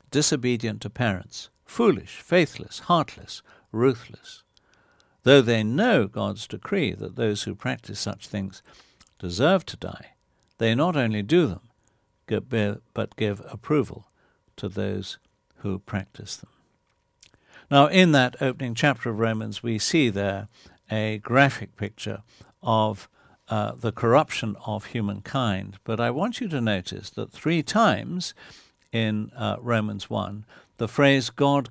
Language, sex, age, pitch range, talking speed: English, male, 60-79, 105-130 Hz, 130 wpm